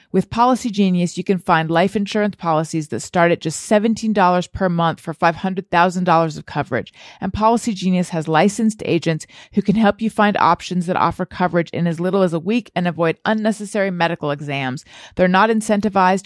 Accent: American